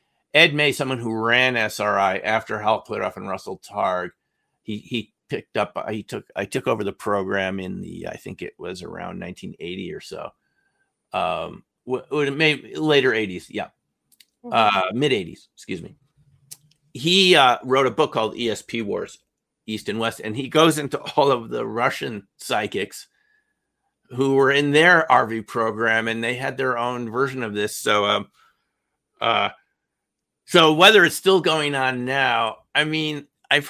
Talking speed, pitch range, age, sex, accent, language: 160 wpm, 110-145 Hz, 50-69, male, American, English